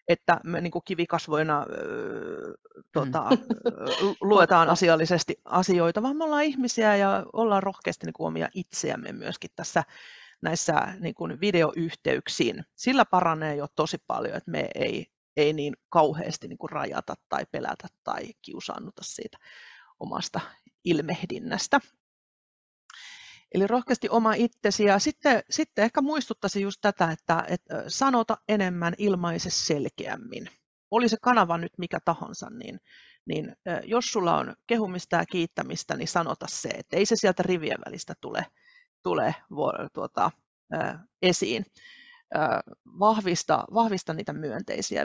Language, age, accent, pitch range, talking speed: Finnish, 30-49, native, 170-235 Hz, 110 wpm